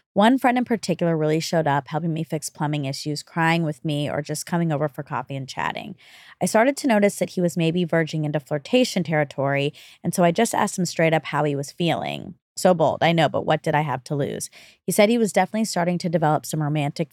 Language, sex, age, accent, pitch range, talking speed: English, female, 20-39, American, 150-190 Hz, 240 wpm